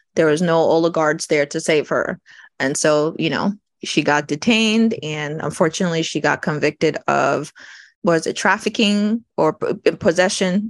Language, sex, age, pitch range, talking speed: English, female, 20-39, 155-205 Hz, 145 wpm